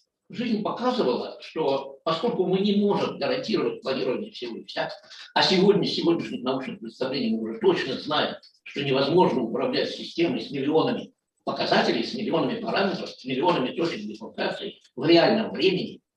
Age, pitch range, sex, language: 60-79, 165-235 Hz, male, Russian